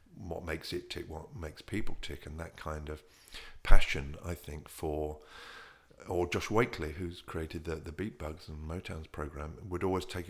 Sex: male